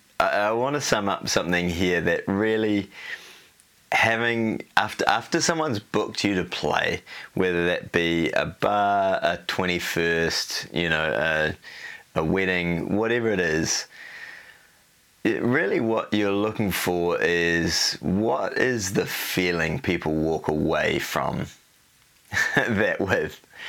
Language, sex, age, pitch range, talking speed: English, male, 20-39, 85-105 Hz, 120 wpm